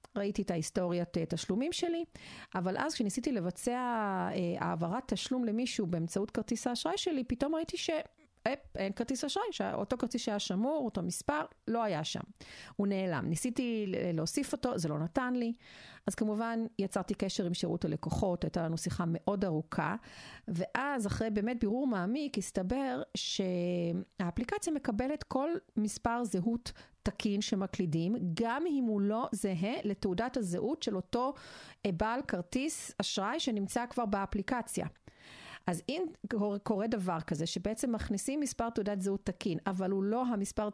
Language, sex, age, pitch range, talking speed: Hebrew, female, 40-59, 195-250 Hz, 140 wpm